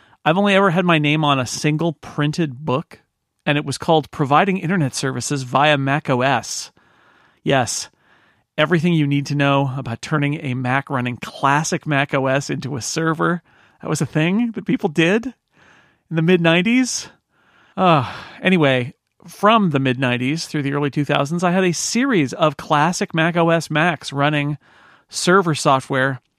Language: English